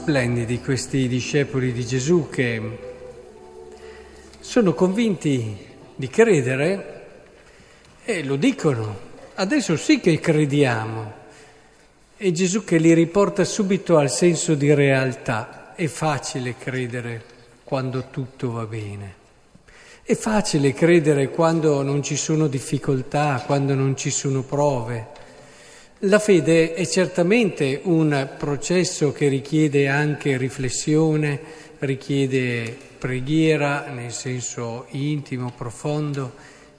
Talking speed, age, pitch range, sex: 105 wpm, 50-69, 130-160 Hz, male